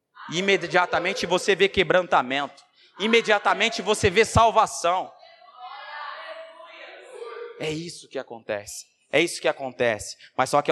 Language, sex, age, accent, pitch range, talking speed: Portuguese, male, 20-39, Brazilian, 150-235 Hz, 105 wpm